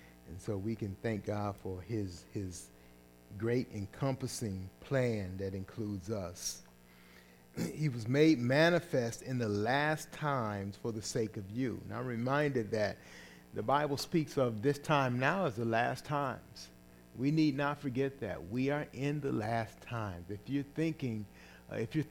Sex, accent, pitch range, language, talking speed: male, American, 100-135 Hz, English, 165 wpm